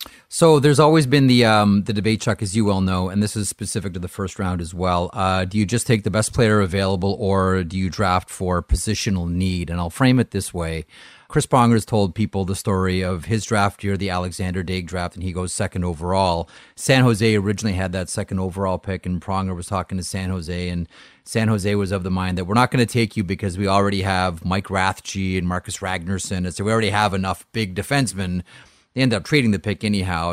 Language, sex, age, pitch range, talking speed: English, male, 30-49, 90-110 Hz, 235 wpm